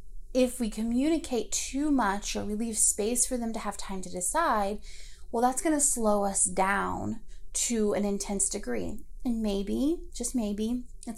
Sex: female